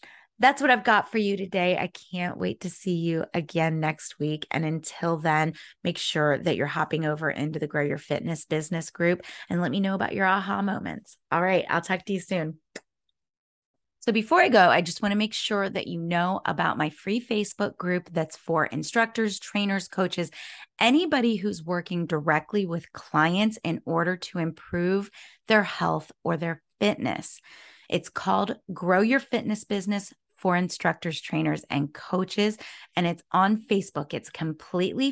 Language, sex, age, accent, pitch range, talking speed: English, female, 30-49, American, 165-210 Hz, 175 wpm